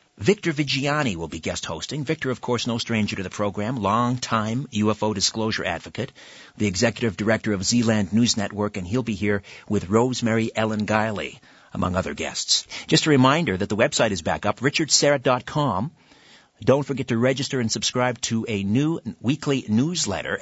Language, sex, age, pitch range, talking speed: English, male, 50-69, 110-150 Hz, 170 wpm